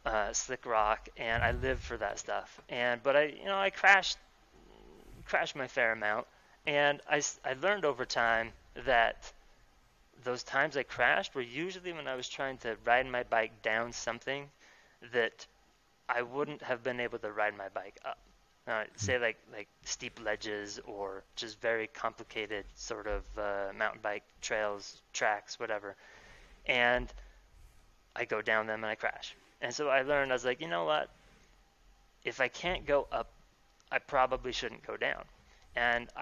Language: English